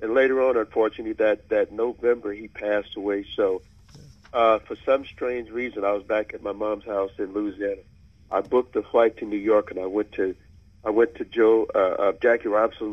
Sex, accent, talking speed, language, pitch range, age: male, American, 205 wpm, English, 100-125 Hz, 60-79